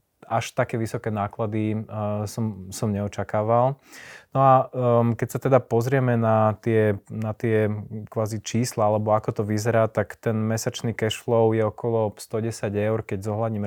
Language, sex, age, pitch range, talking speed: Slovak, male, 20-39, 110-120 Hz, 160 wpm